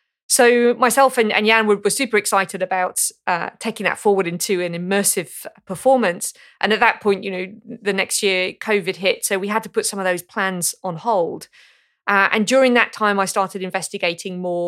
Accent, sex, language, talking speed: British, female, English, 190 wpm